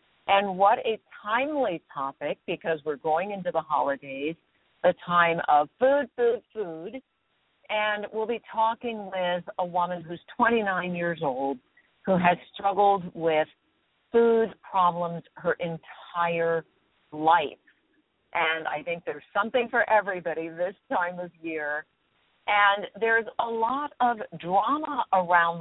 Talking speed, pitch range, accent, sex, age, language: 130 wpm, 165-220 Hz, American, female, 50-69, English